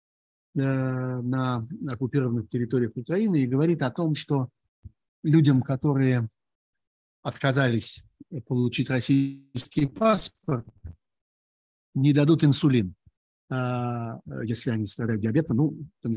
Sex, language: male, Russian